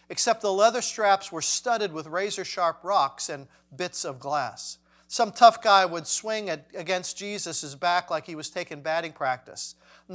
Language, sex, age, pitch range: English, male, 50-69, 155-210 Hz